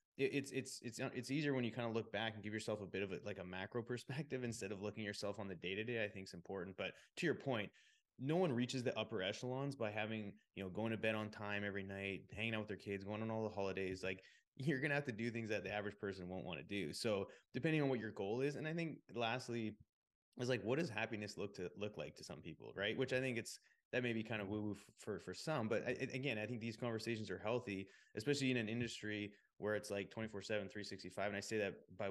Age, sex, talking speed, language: 20-39, male, 265 wpm, English